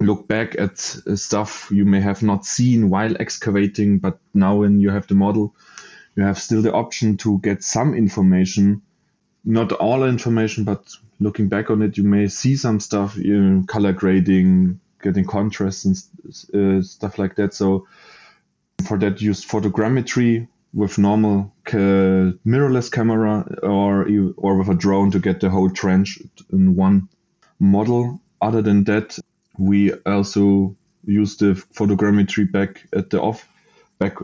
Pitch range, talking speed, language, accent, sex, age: 95-105 Hz, 150 wpm, English, German, male, 20-39